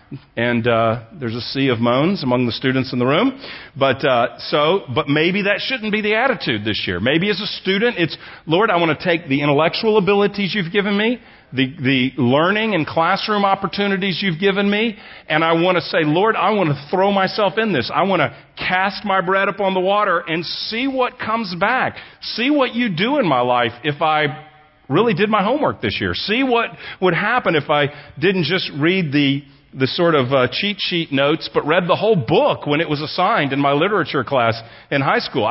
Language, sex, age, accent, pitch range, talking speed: English, male, 40-59, American, 145-205 Hz, 210 wpm